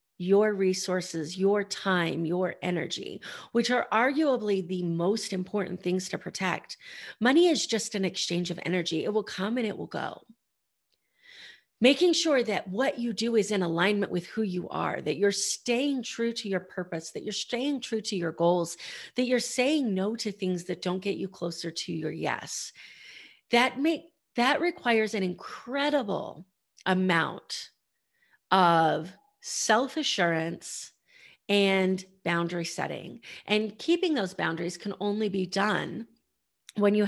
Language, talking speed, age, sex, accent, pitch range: English, 150 wpm, 40-59, female, American, 175-225 Hz